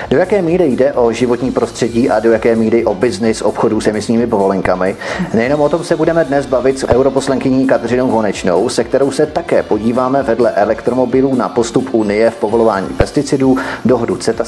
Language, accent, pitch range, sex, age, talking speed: Czech, native, 115-140 Hz, male, 30-49, 180 wpm